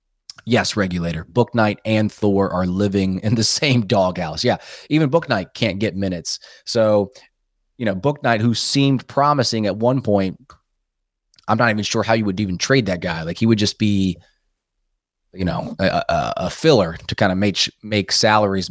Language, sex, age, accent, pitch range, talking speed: English, male, 20-39, American, 95-120 Hz, 175 wpm